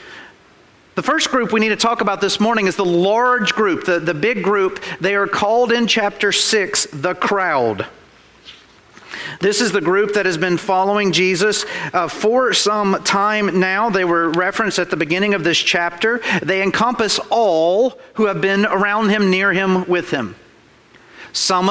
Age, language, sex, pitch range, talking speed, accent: 40-59, English, male, 175-215 Hz, 170 wpm, American